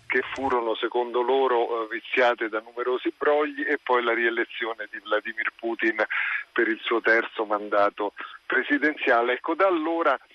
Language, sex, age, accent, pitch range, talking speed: Italian, male, 40-59, native, 120-165 Hz, 140 wpm